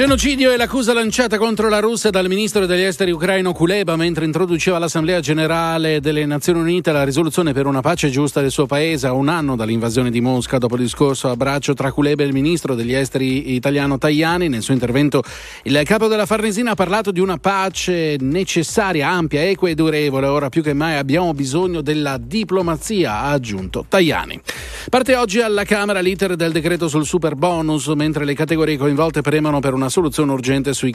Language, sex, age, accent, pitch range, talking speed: Italian, male, 40-59, native, 135-180 Hz, 190 wpm